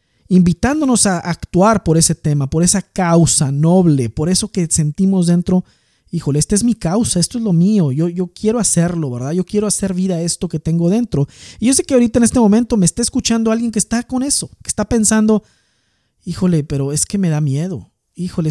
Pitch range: 155-215 Hz